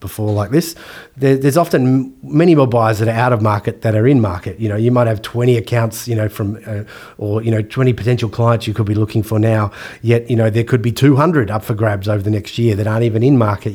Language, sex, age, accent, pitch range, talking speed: English, male, 30-49, Australian, 105-120 Hz, 255 wpm